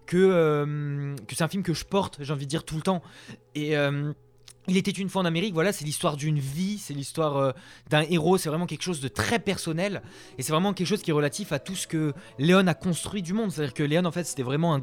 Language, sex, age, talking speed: French, male, 20-39, 275 wpm